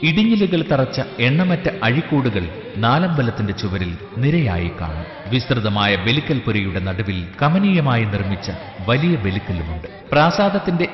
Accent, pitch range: native, 100-145 Hz